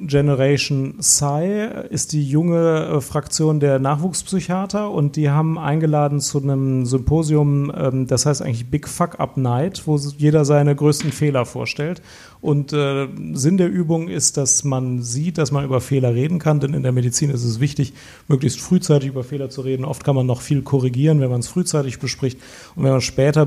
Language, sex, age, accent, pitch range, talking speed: German, male, 40-59, German, 130-150 Hz, 180 wpm